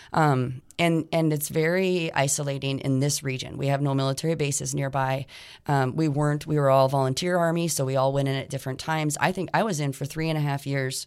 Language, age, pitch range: English, 30-49, 135-155 Hz